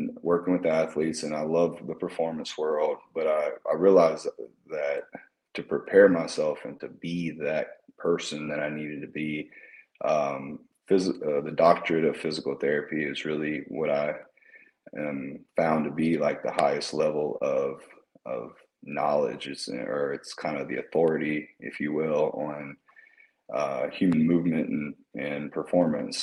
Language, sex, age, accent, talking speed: English, male, 30-49, American, 155 wpm